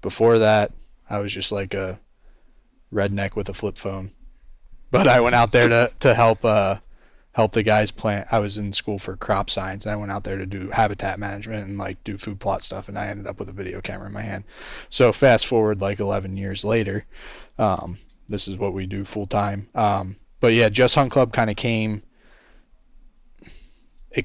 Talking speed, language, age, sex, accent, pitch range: 205 wpm, English, 20-39, male, American, 100-110 Hz